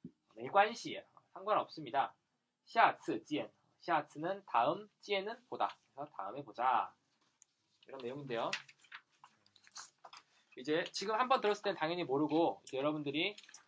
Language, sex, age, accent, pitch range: Korean, male, 20-39, native, 160-220 Hz